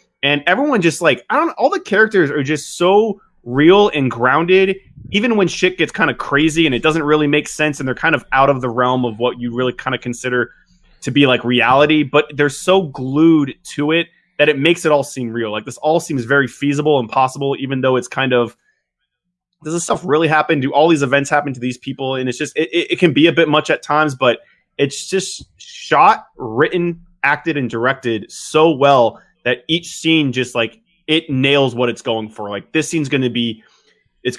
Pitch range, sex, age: 125-165 Hz, male, 20-39